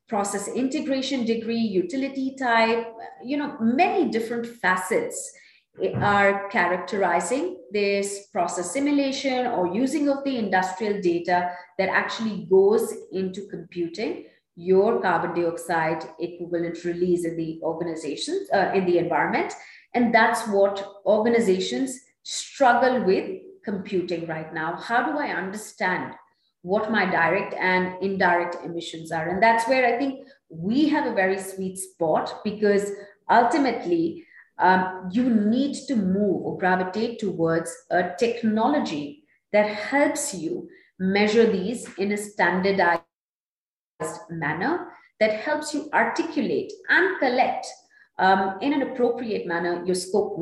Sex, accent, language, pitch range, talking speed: female, Indian, English, 180-255 Hz, 125 wpm